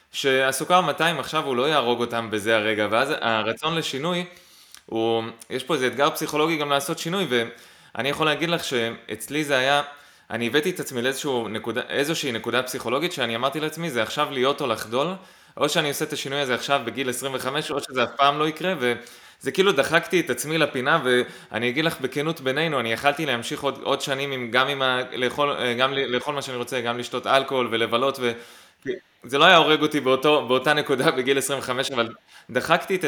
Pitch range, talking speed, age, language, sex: 120-150 Hz, 190 wpm, 20-39, Hebrew, male